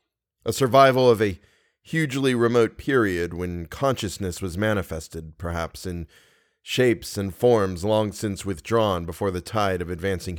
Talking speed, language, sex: 140 wpm, English, male